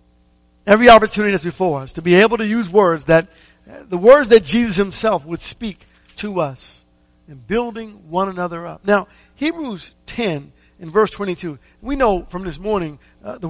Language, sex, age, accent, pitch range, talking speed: English, male, 50-69, American, 170-220 Hz, 175 wpm